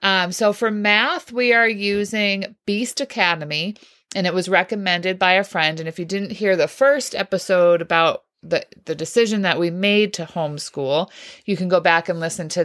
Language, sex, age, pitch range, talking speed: English, female, 30-49, 165-205 Hz, 190 wpm